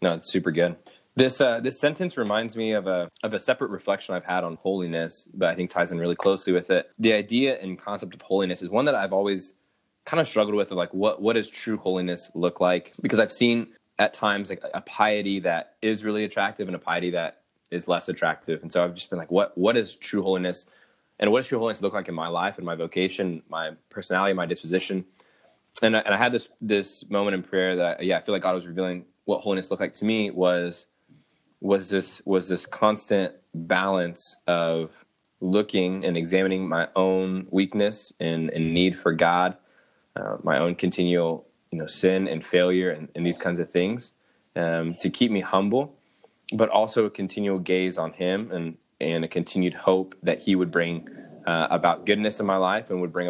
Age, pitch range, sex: 20-39, 90-100 Hz, male